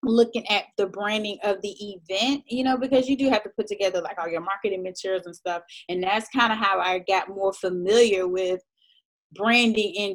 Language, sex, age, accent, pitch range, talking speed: English, female, 20-39, American, 185-225 Hz, 205 wpm